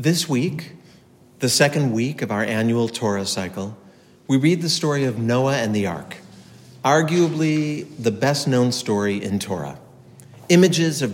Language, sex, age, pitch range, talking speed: English, male, 50-69, 105-140 Hz, 145 wpm